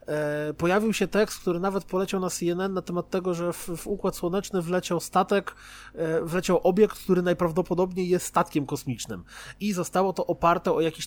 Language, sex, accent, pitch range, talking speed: Polish, male, native, 175-230 Hz, 165 wpm